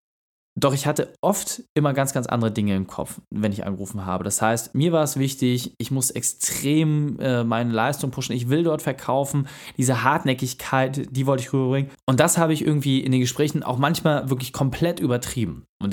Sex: male